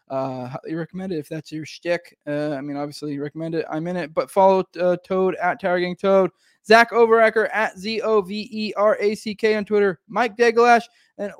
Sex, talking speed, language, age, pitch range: male, 215 wpm, English, 20-39, 150-210 Hz